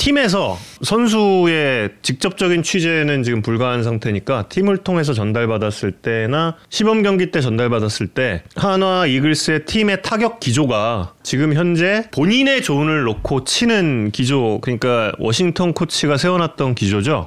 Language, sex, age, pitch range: Korean, male, 30-49, 120-175 Hz